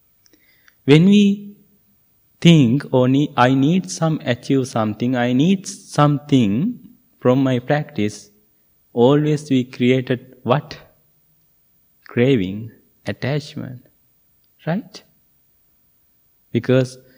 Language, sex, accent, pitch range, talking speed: English, male, Indian, 120-165 Hz, 85 wpm